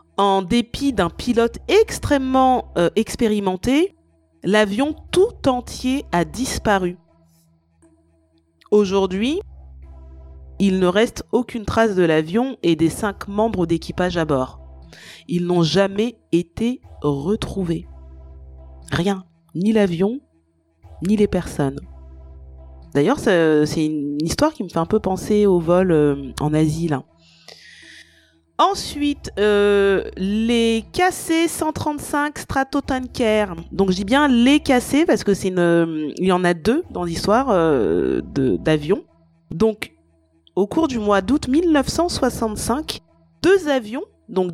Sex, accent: female, French